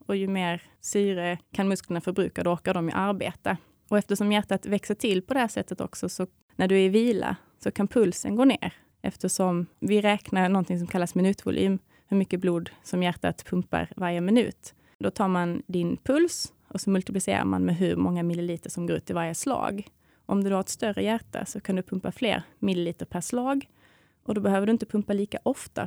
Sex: female